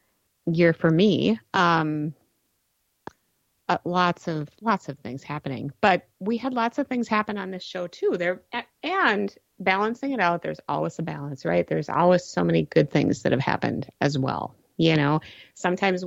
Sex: female